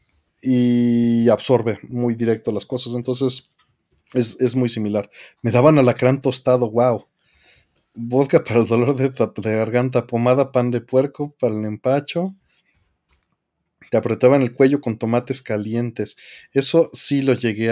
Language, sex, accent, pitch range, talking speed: Spanish, male, Mexican, 110-130 Hz, 140 wpm